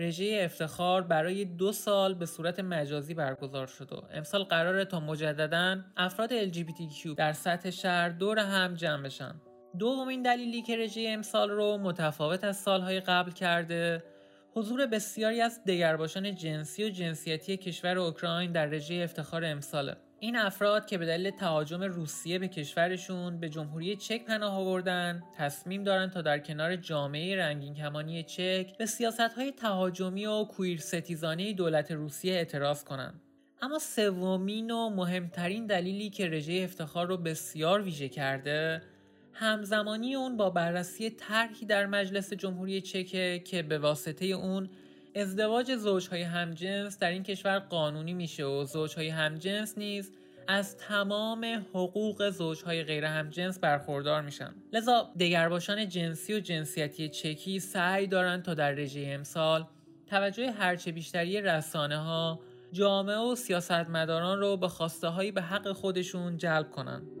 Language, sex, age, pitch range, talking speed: English, male, 30-49, 160-200 Hz, 140 wpm